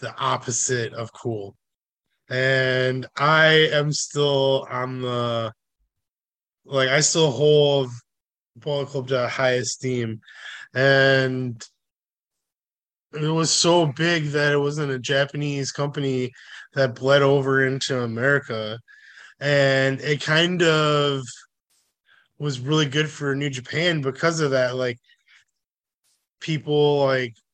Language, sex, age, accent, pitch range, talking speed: English, male, 20-39, American, 125-145 Hz, 110 wpm